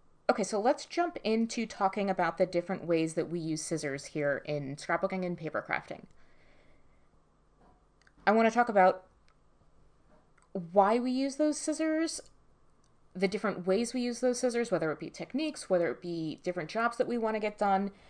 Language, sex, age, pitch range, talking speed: English, female, 20-39, 155-195 Hz, 170 wpm